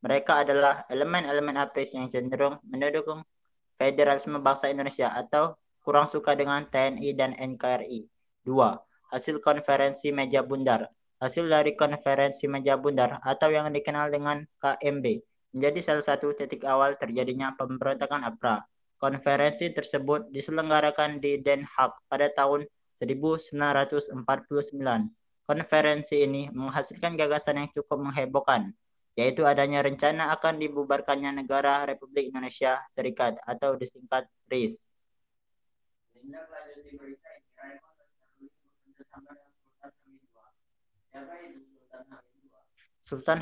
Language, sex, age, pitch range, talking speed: Indonesian, male, 20-39, 135-150 Hz, 95 wpm